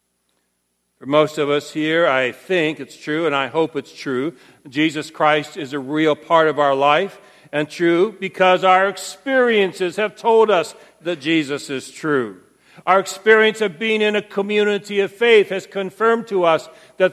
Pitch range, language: 155-200 Hz, English